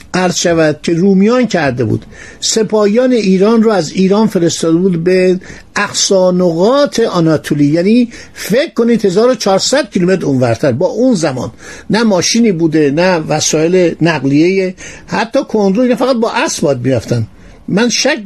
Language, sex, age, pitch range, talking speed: Persian, male, 50-69, 155-215 Hz, 130 wpm